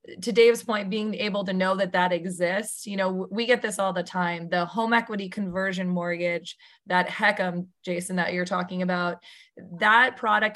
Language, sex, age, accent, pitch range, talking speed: English, female, 20-39, American, 180-200 Hz, 180 wpm